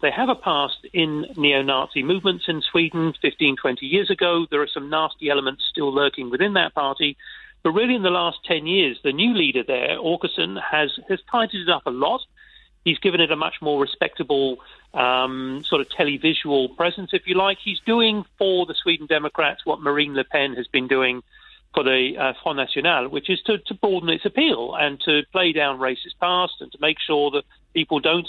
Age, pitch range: 40-59, 145-190 Hz